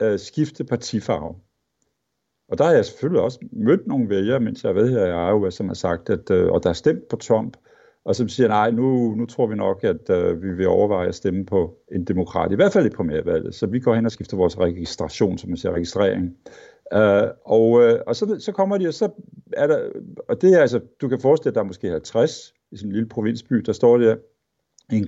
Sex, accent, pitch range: male, native, 110-150 Hz